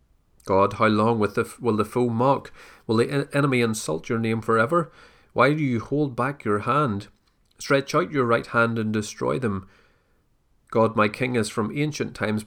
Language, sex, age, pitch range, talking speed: English, male, 30-49, 105-135 Hz, 175 wpm